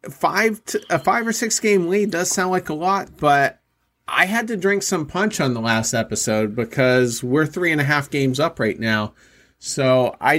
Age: 40-59